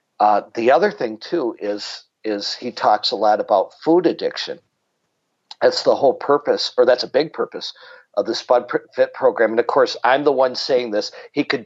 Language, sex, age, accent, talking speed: English, male, 50-69, American, 195 wpm